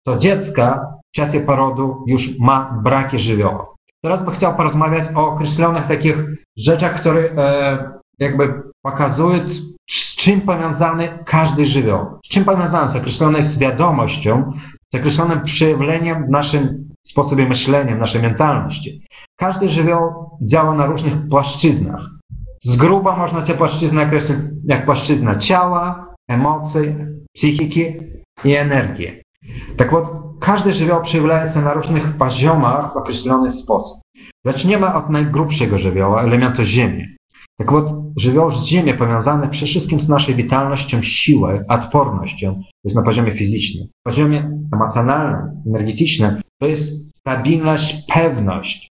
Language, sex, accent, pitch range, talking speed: Polish, male, native, 130-160 Hz, 130 wpm